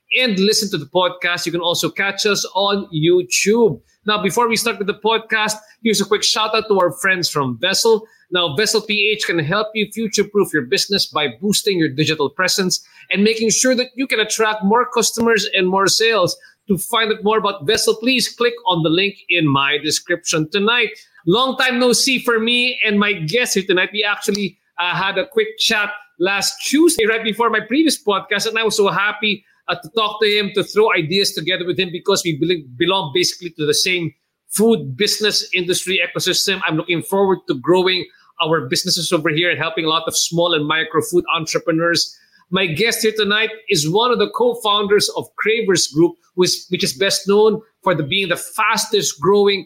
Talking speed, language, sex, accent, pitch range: 195 wpm, English, male, Filipino, 175-220 Hz